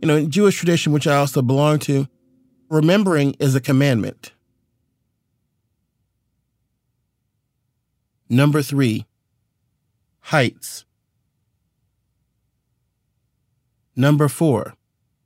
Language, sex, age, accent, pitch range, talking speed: English, male, 40-59, American, 100-135 Hz, 75 wpm